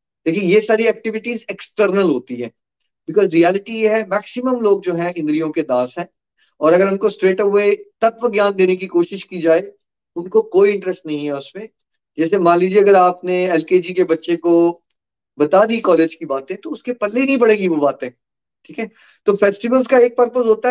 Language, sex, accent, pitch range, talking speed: Hindi, male, native, 170-245 Hz, 190 wpm